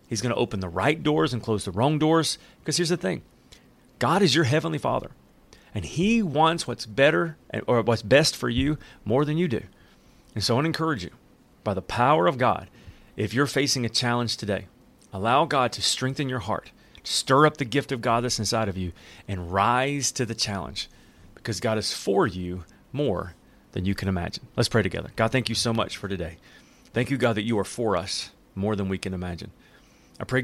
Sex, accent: male, American